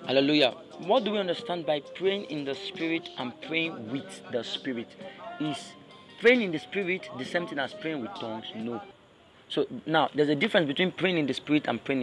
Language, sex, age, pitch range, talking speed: English, male, 40-59, 155-220 Hz, 200 wpm